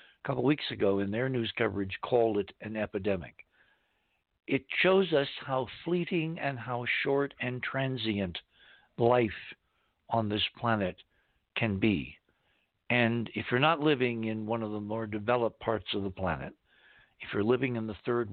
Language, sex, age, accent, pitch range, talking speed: English, male, 60-79, American, 100-125 Hz, 160 wpm